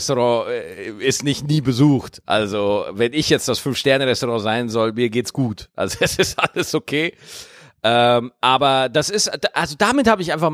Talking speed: 170 wpm